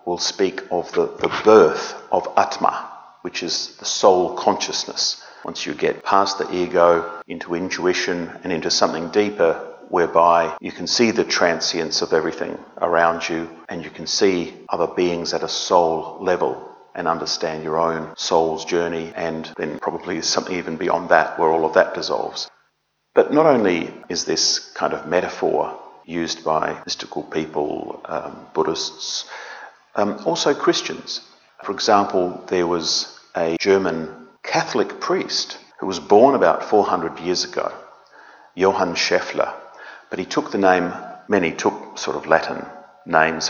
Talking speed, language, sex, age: 150 wpm, English, male, 50-69